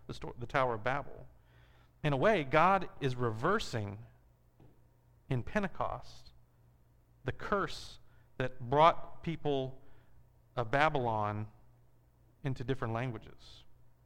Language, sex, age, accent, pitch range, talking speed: English, male, 40-59, American, 115-150 Hz, 100 wpm